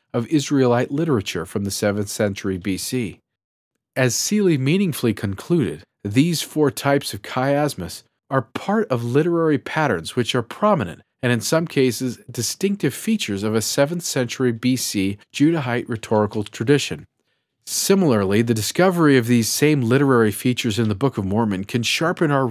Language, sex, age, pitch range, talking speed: English, male, 40-59, 105-140 Hz, 145 wpm